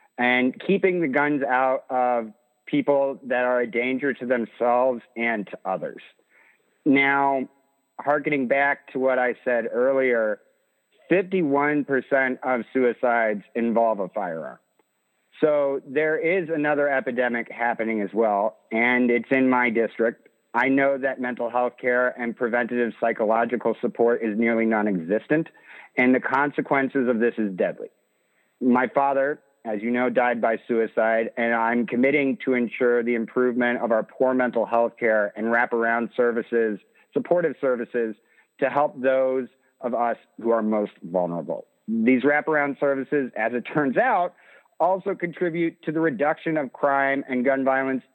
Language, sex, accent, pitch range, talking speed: English, male, American, 115-140 Hz, 145 wpm